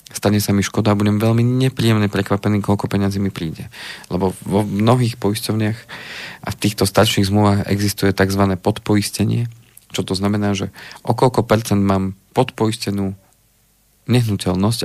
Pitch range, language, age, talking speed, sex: 100-115 Hz, Slovak, 40-59, 140 wpm, male